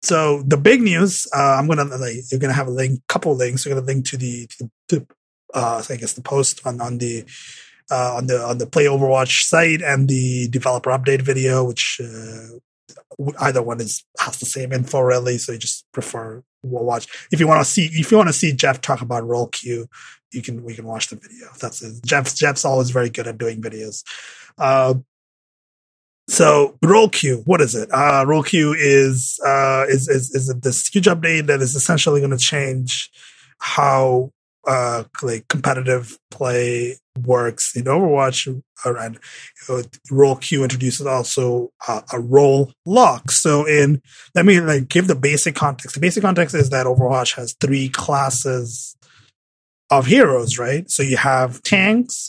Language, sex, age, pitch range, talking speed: English, male, 30-49, 125-145 Hz, 180 wpm